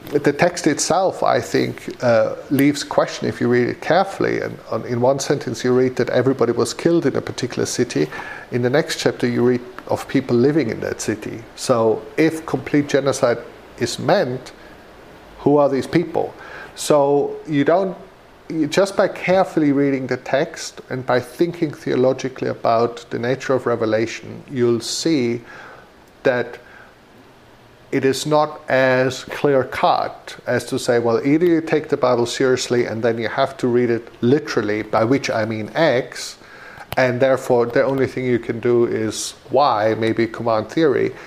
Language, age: English, 50-69